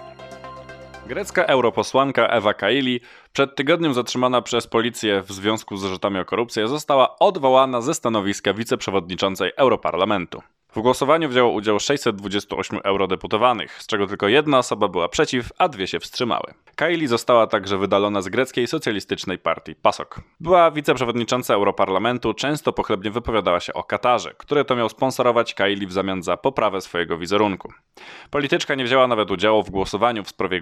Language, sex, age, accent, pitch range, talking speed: Polish, male, 20-39, native, 100-130 Hz, 150 wpm